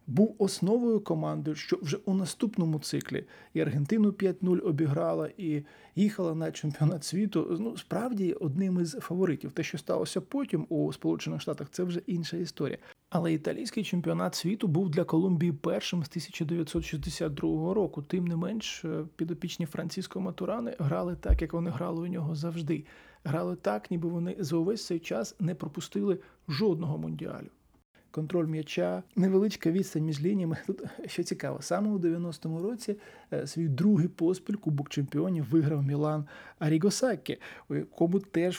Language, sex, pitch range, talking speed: Ukrainian, male, 160-185 Hz, 150 wpm